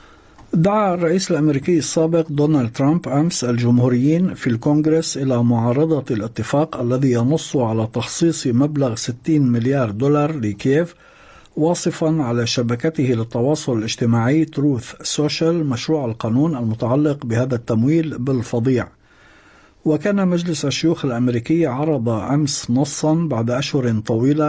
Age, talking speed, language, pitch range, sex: 50-69, 110 wpm, Arabic, 120-155 Hz, male